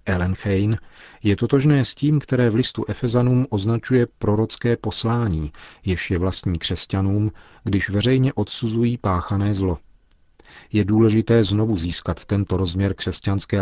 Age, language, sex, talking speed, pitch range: 40-59, Czech, male, 125 wpm, 90-110 Hz